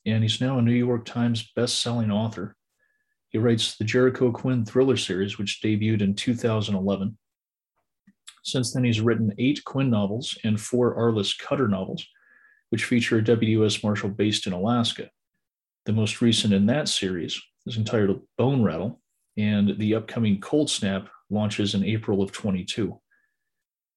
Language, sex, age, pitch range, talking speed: English, male, 40-59, 100-120 Hz, 150 wpm